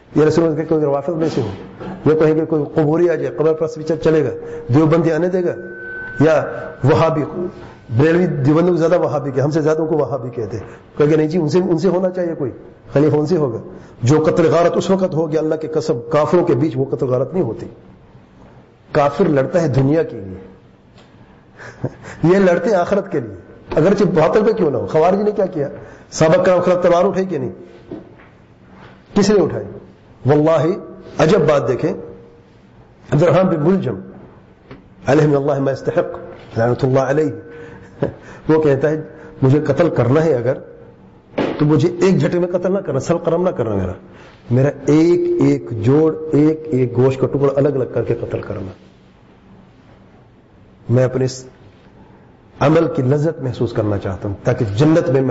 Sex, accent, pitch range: male, Indian, 125-165 Hz